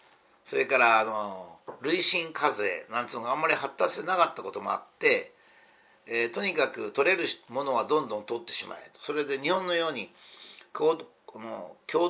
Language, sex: Japanese, male